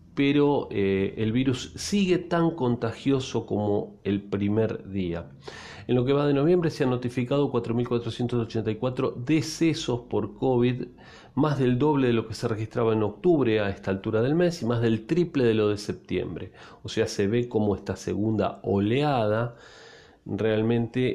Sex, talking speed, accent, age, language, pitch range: male, 160 wpm, Argentinian, 40-59, Spanish, 110-145 Hz